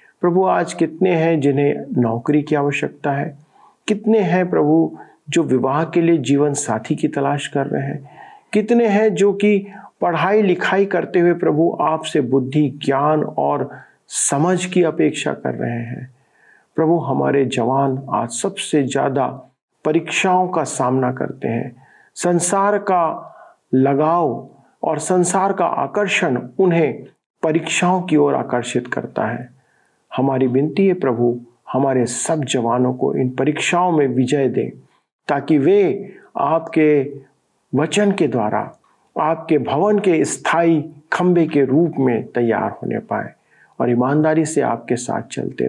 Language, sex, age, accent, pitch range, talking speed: Hindi, male, 50-69, native, 135-180 Hz, 135 wpm